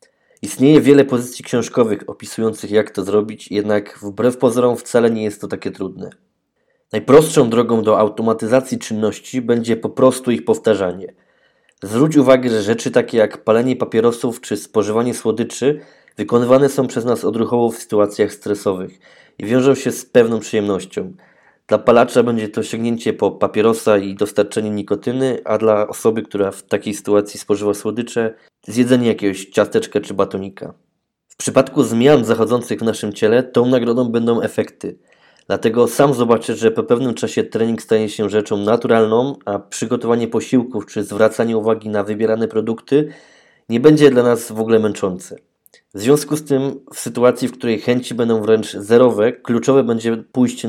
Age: 20-39